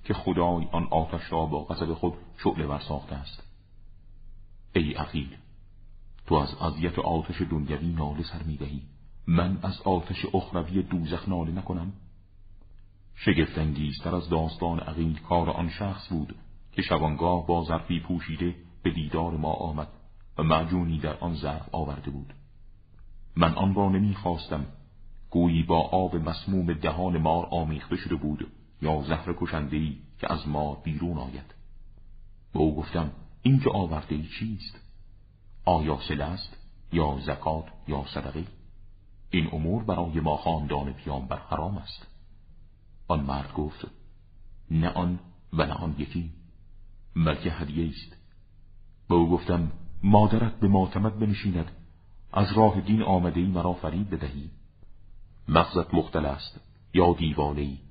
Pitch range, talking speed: 80-95 Hz, 130 wpm